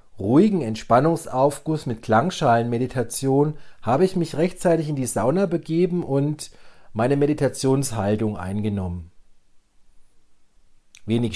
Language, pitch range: German, 105-165 Hz